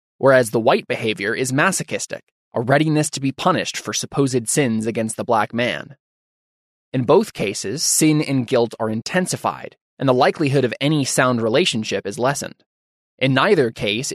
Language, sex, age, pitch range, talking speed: English, male, 20-39, 115-150 Hz, 160 wpm